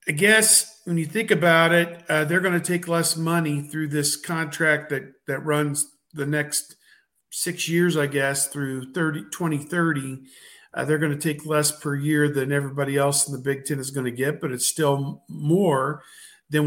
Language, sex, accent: English, male, American